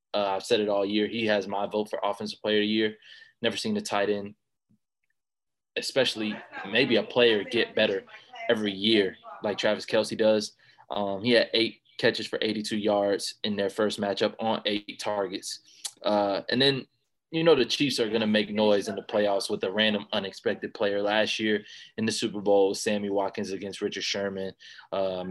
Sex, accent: male, American